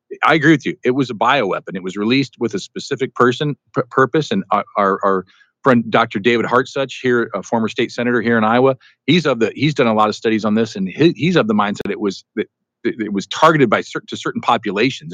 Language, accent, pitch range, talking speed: English, American, 120-170 Hz, 245 wpm